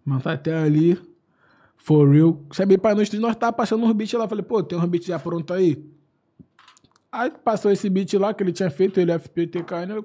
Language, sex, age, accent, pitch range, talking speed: Portuguese, male, 20-39, Brazilian, 165-205 Hz, 220 wpm